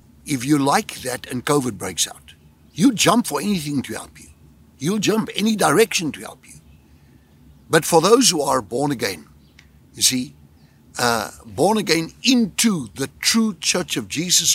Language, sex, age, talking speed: English, male, 60-79, 165 wpm